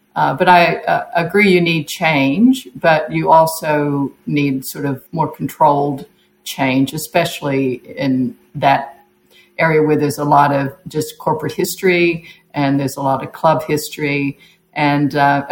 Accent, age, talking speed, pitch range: American, 50-69, 145 wpm, 140-175 Hz